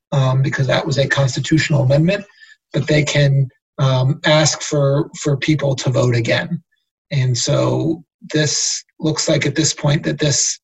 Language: English